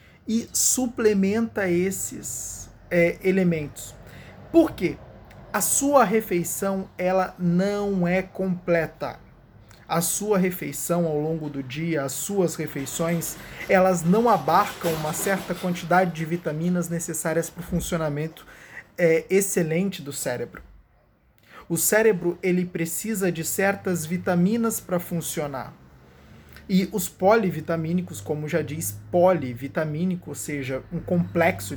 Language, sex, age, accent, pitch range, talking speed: Portuguese, male, 20-39, Brazilian, 150-185 Hz, 110 wpm